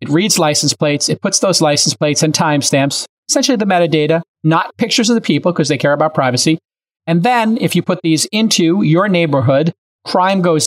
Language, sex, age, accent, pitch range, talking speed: English, male, 30-49, American, 150-195 Hz, 195 wpm